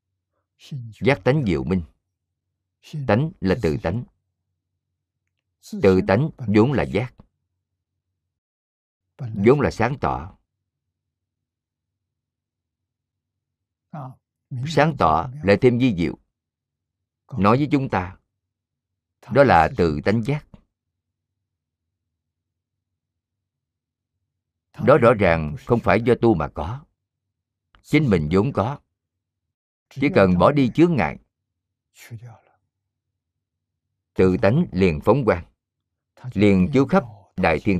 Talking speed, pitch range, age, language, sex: 95 wpm, 90-115 Hz, 50-69, Vietnamese, male